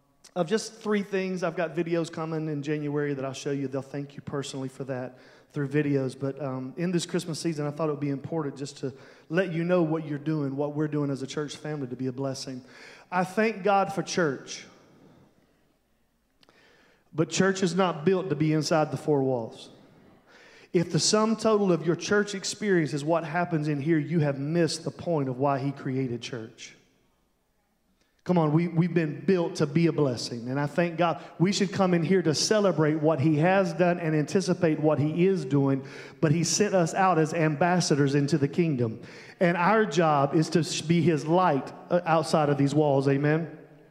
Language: English